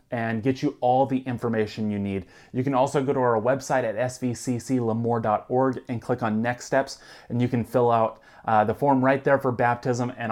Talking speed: 205 wpm